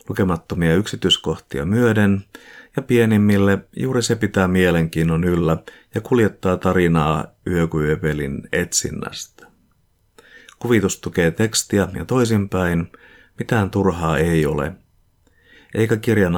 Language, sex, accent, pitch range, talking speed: Finnish, male, native, 85-105 Hz, 95 wpm